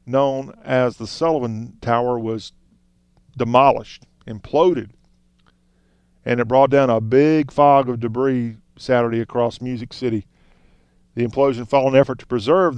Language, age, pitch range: English, 40-59, 115-140 Hz